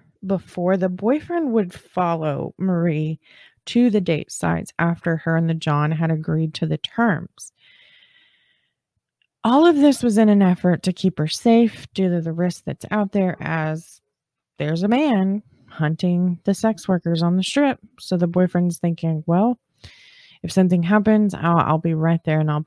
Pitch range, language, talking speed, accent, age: 165-215 Hz, English, 170 wpm, American, 20-39